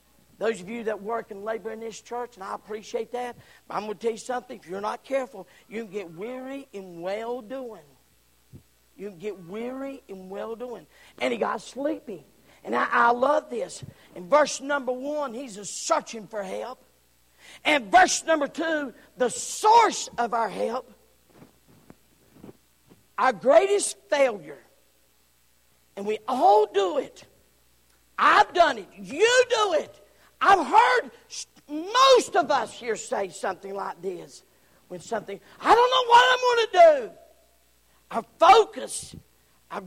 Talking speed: 150 wpm